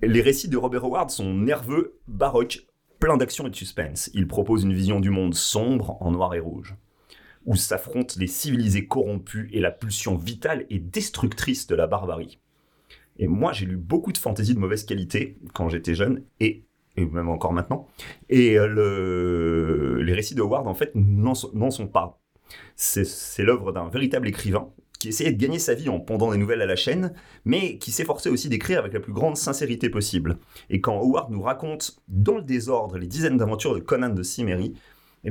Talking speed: 190 wpm